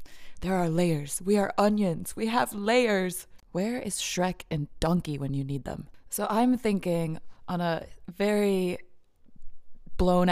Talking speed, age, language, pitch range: 145 wpm, 20-39, English, 145-175 Hz